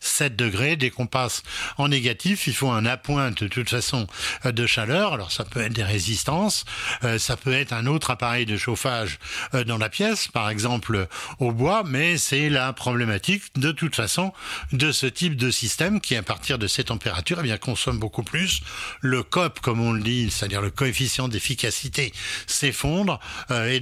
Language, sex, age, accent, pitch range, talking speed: French, male, 60-79, French, 115-140 Hz, 180 wpm